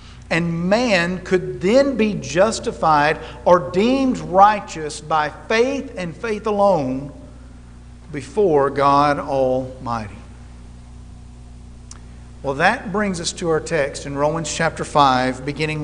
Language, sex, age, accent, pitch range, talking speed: English, male, 50-69, American, 130-185 Hz, 110 wpm